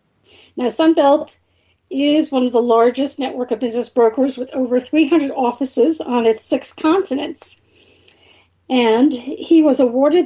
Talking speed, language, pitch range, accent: 135 wpm, English, 245-305 Hz, American